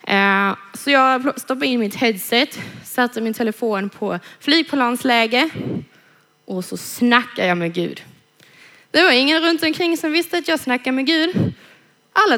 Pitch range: 210-300 Hz